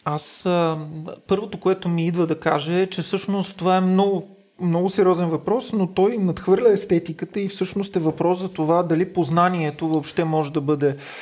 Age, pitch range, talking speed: 30-49, 150-195 Hz, 175 wpm